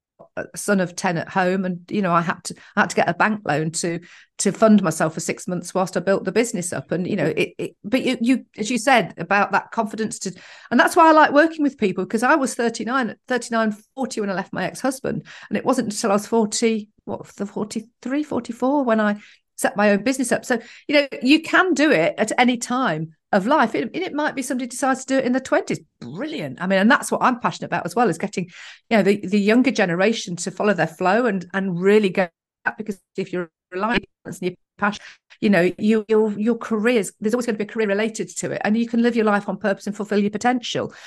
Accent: British